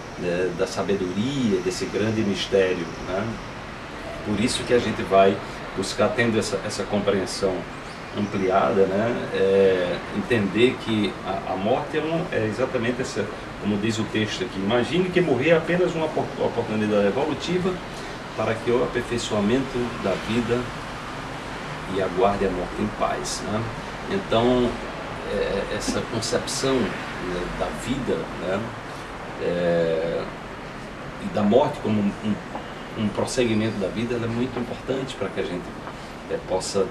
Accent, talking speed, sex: Brazilian, 140 wpm, male